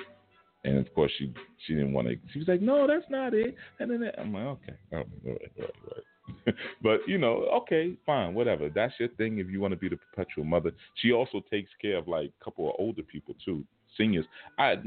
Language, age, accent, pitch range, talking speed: English, 30-49, American, 85-120 Hz, 230 wpm